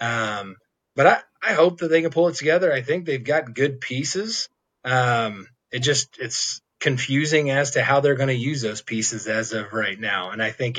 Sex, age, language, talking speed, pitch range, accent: male, 30-49, English, 210 wpm, 110-130 Hz, American